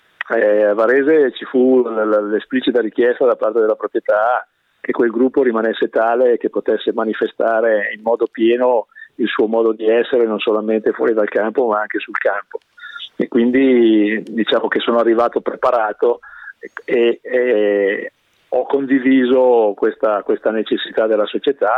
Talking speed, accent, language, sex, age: 145 wpm, native, Italian, male, 40-59